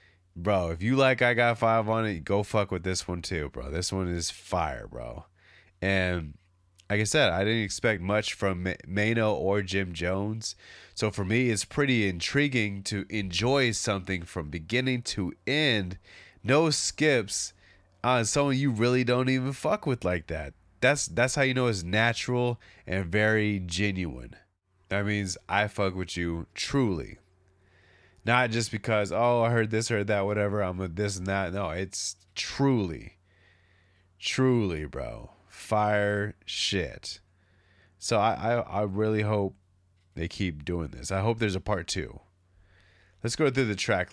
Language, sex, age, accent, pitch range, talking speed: English, male, 20-39, American, 90-115 Hz, 160 wpm